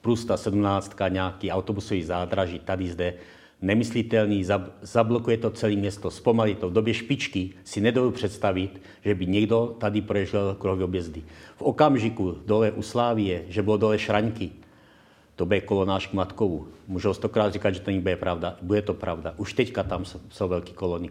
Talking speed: 170 wpm